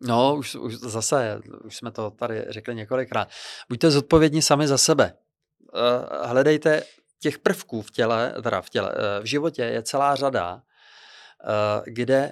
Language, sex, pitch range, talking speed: Czech, male, 105-130 Hz, 140 wpm